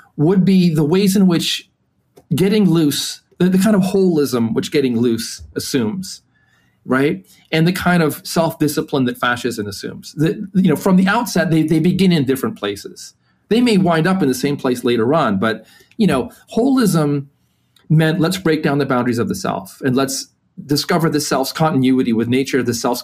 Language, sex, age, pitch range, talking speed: English, male, 40-59, 120-175 Hz, 185 wpm